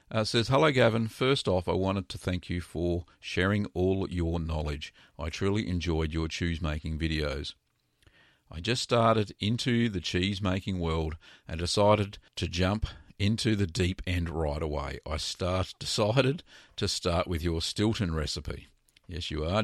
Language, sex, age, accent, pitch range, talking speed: English, male, 50-69, Australian, 85-105 Hz, 160 wpm